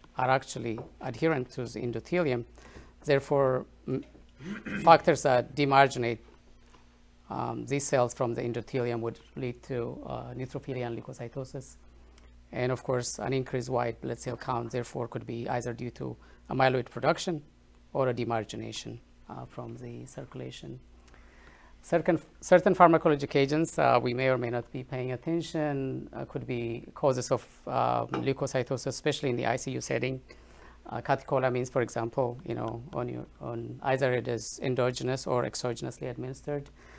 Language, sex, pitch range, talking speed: English, female, 115-135 Hz, 145 wpm